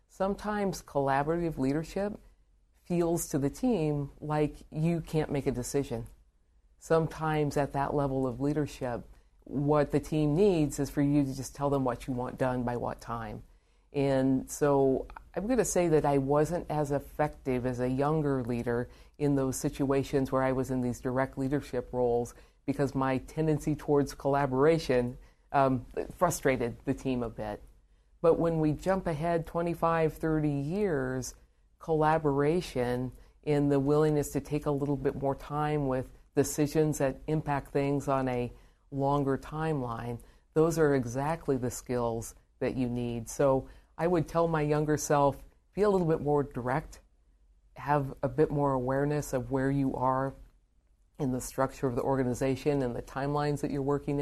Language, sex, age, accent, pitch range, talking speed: English, female, 50-69, American, 130-150 Hz, 160 wpm